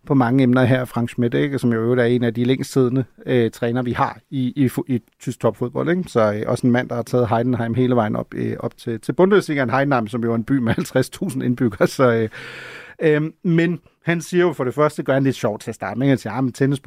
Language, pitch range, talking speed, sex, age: Danish, 125-175 Hz, 265 wpm, male, 40-59